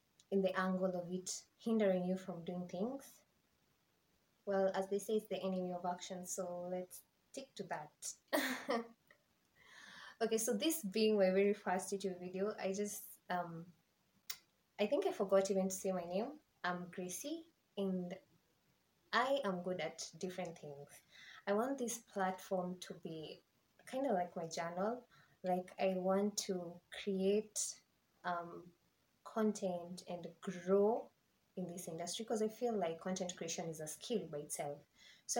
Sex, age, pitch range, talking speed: female, 20-39, 180-205 Hz, 150 wpm